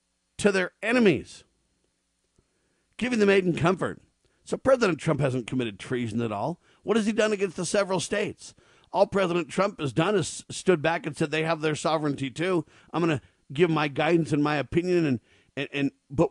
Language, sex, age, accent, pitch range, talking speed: English, male, 50-69, American, 140-185 Hz, 190 wpm